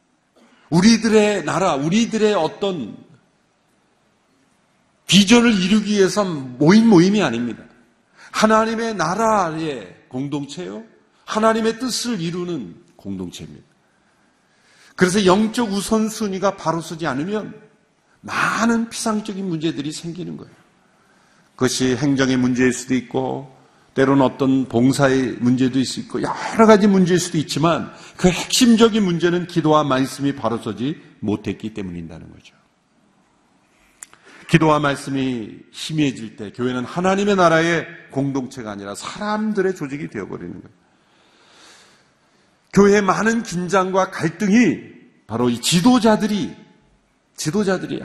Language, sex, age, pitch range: Korean, male, 40-59, 130-210 Hz